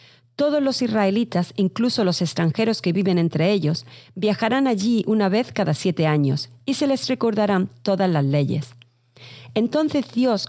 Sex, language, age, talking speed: female, Spanish, 40-59, 150 wpm